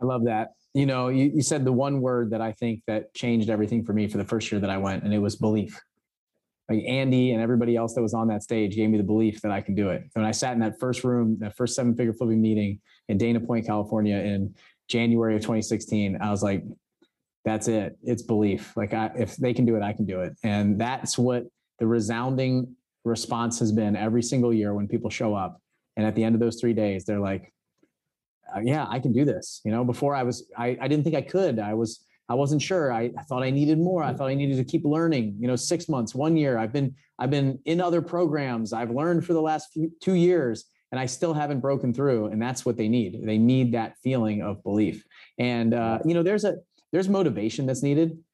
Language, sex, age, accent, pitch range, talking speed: English, male, 30-49, American, 110-140 Hz, 240 wpm